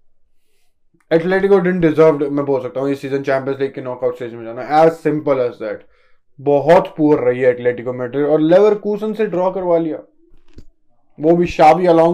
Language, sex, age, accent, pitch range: Hindi, male, 20-39, native, 130-165 Hz